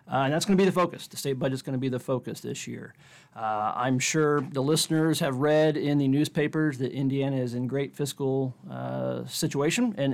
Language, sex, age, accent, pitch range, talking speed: English, male, 40-59, American, 125-145 Hz, 225 wpm